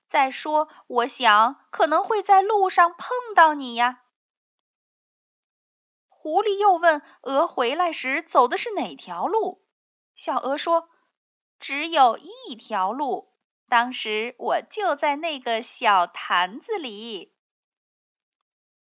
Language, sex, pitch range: Chinese, female, 240-365 Hz